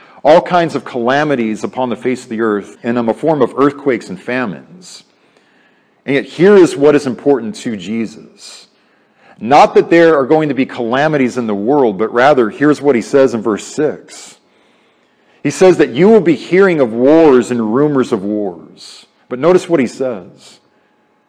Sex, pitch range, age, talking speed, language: male, 120-160 Hz, 40-59, 180 wpm, English